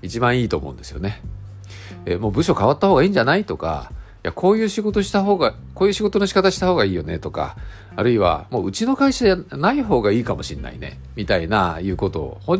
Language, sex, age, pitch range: Japanese, male, 50-69, 95-140 Hz